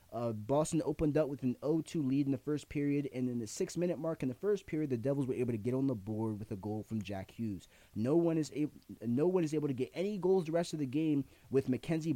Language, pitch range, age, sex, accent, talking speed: English, 110-145 Hz, 20-39, male, American, 270 wpm